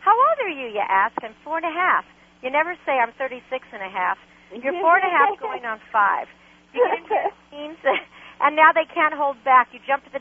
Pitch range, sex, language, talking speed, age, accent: 265-380 Hz, female, English, 240 wpm, 50-69, American